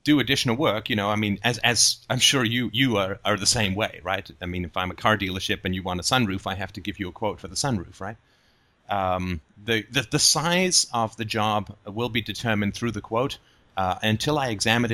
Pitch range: 95-115 Hz